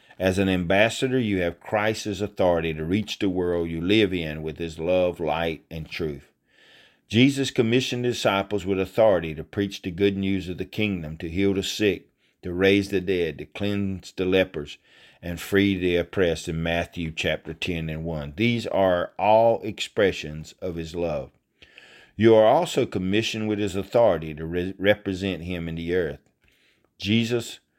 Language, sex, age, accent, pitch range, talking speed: English, male, 50-69, American, 85-105 Hz, 165 wpm